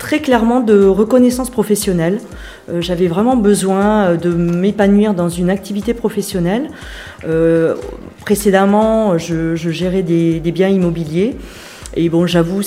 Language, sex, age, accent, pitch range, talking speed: French, female, 40-59, French, 165-205 Hz, 130 wpm